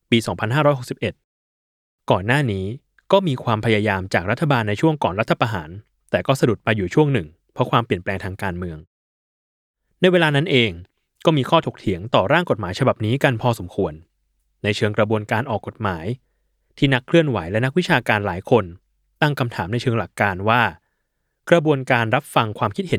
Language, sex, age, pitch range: Thai, male, 20-39, 100-140 Hz